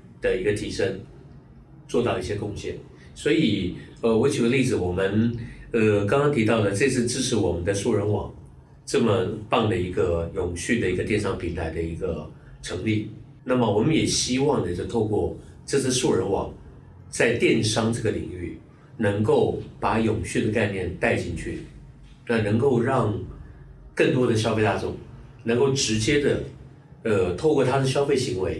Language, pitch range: Chinese, 100-125 Hz